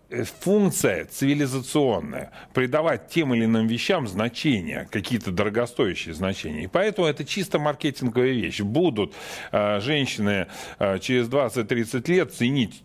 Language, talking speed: Russian, 115 wpm